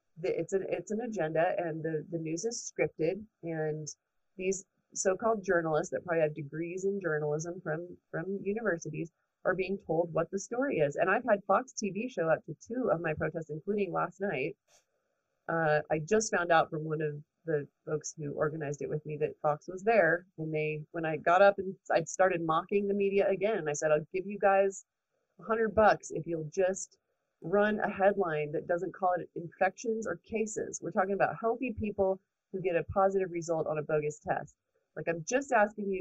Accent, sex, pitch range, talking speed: American, female, 155-195 Hz, 195 wpm